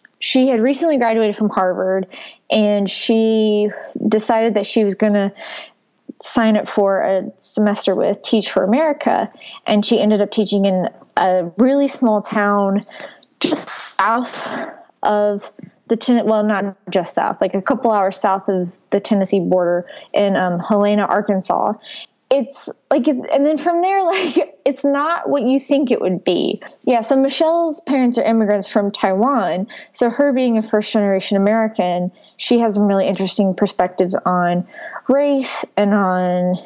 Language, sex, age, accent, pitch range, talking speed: English, female, 20-39, American, 195-260 Hz, 155 wpm